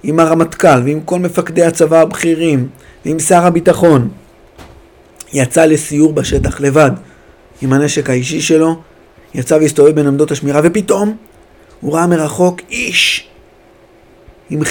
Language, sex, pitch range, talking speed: Hebrew, male, 130-175 Hz, 120 wpm